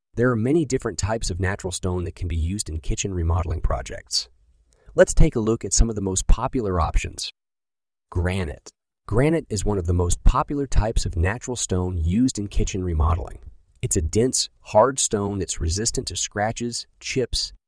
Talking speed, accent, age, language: 180 wpm, American, 30-49, English